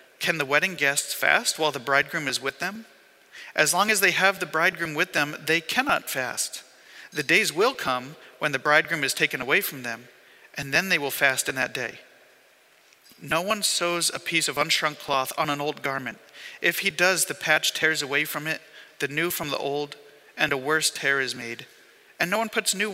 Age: 40-59